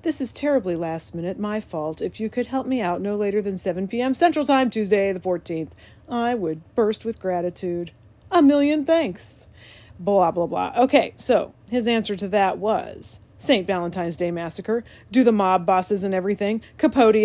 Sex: female